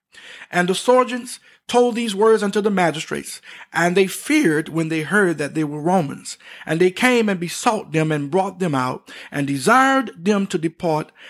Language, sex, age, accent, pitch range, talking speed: English, male, 50-69, American, 155-220 Hz, 180 wpm